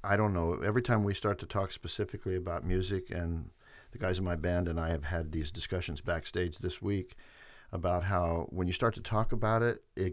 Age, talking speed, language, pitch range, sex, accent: 50-69, 220 wpm, English, 75-95 Hz, male, American